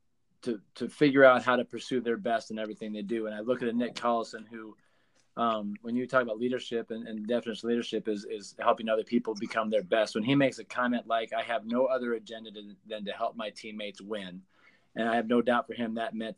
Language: English